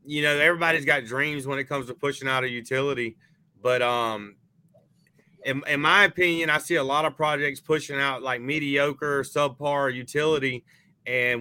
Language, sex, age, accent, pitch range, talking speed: English, male, 30-49, American, 120-140 Hz, 170 wpm